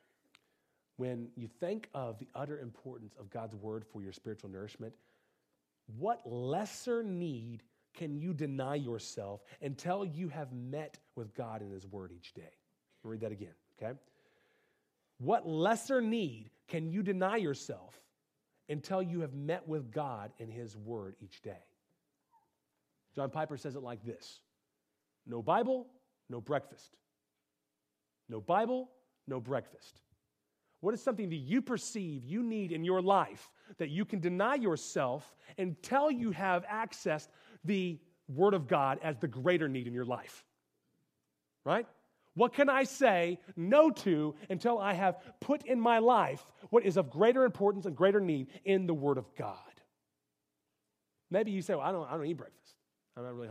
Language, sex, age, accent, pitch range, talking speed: English, male, 40-59, American, 115-195 Hz, 155 wpm